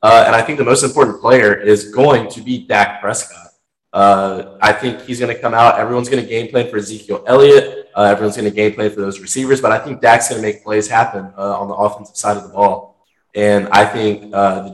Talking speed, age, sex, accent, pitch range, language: 250 wpm, 20-39, male, American, 100-120 Hz, English